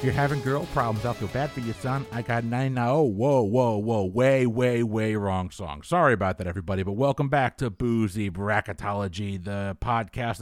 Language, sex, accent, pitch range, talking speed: English, male, American, 115-150 Hz, 200 wpm